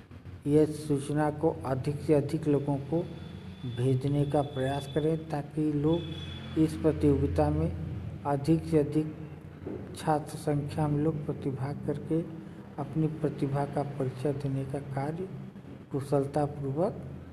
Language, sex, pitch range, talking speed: Hindi, male, 140-155 Hz, 120 wpm